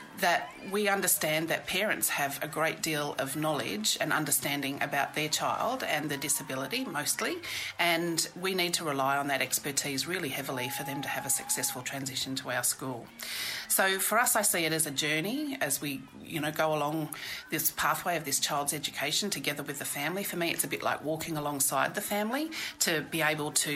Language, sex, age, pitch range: English, female, 40-59, 145-185 Hz